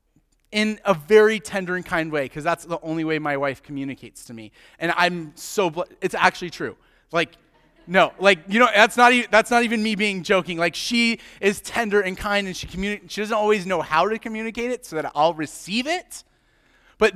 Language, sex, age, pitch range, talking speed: English, male, 30-49, 170-225 Hz, 210 wpm